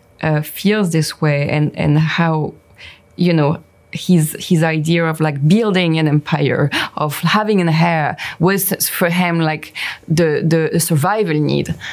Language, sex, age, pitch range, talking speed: English, female, 20-39, 155-175 Hz, 145 wpm